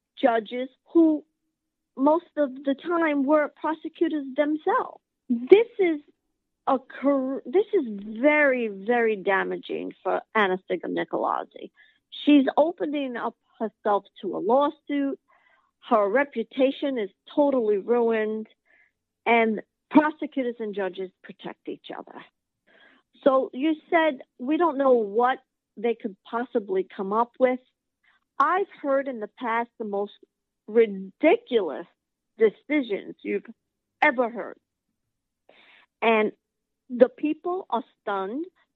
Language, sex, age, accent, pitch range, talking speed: English, female, 50-69, American, 225-300 Hz, 105 wpm